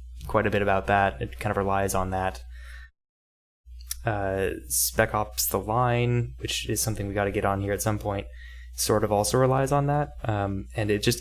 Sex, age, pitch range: male, 10-29, 65-105 Hz